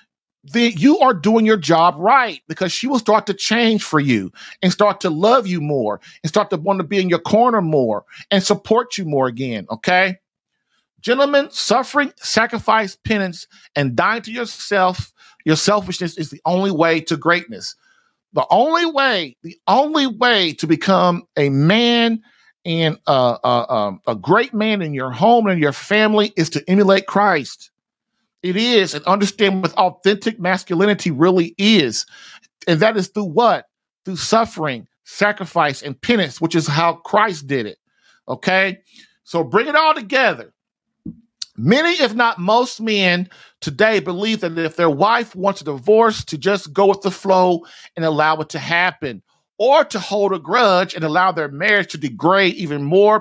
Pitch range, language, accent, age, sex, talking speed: 165-220 Hz, English, American, 40-59, male, 170 wpm